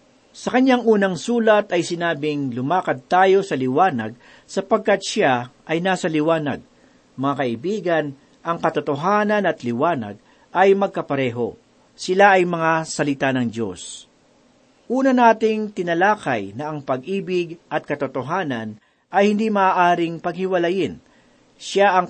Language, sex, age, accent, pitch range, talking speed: Filipino, male, 50-69, native, 140-200 Hz, 115 wpm